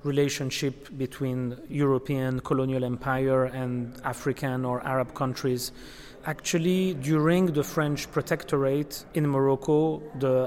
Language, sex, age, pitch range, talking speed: English, male, 30-49, 130-155 Hz, 105 wpm